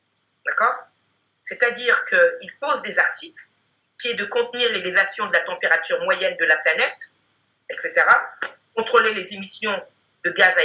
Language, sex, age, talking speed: French, female, 50-69, 140 wpm